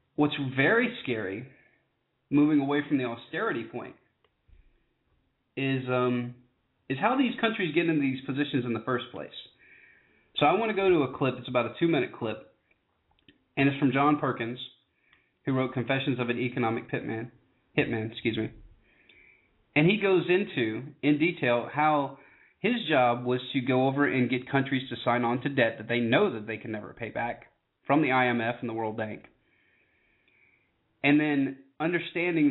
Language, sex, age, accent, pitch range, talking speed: English, male, 30-49, American, 115-145 Hz, 160 wpm